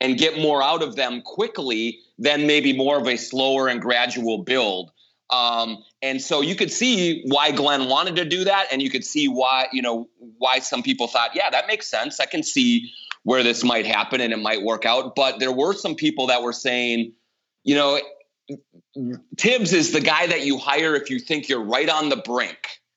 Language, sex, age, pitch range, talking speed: English, male, 30-49, 125-145 Hz, 210 wpm